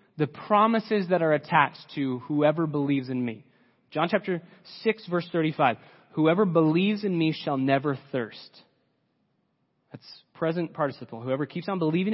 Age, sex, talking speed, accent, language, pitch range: 30-49, male, 145 wpm, American, English, 155-200 Hz